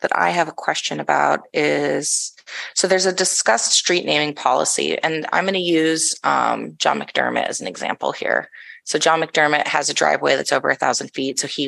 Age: 20-39